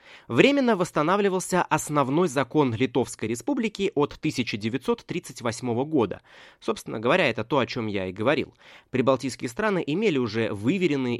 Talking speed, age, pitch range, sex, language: 125 wpm, 20-39, 115-170 Hz, male, Russian